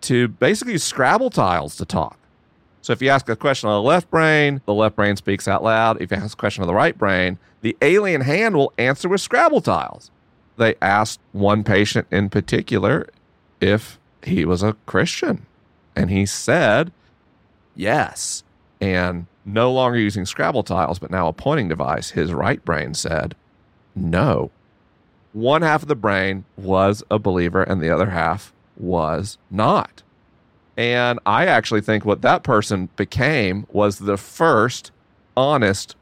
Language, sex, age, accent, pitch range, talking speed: English, male, 40-59, American, 100-135 Hz, 160 wpm